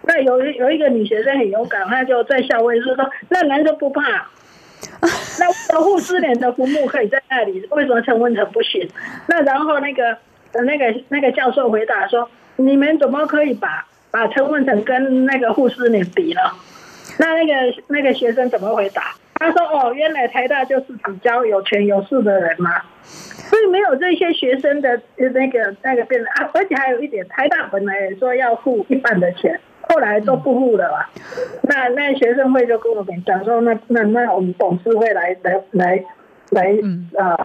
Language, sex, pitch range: Chinese, female, 225-290 Hz